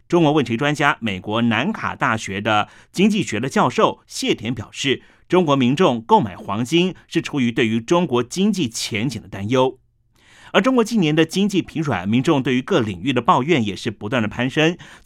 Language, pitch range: Chinese, 115-165 Hz